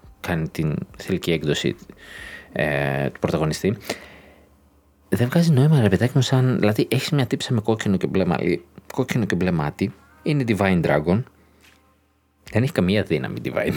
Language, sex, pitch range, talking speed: Greek, male, 90-140 Hz, 130 wpm